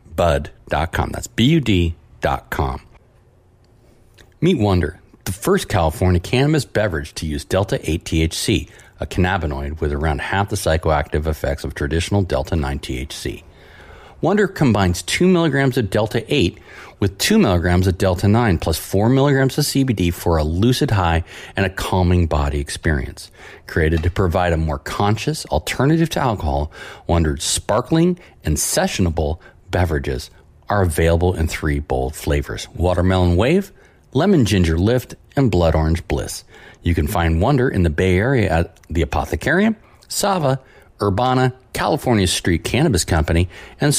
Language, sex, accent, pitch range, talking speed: English, male, American, 80-120 Hz, 140 wpm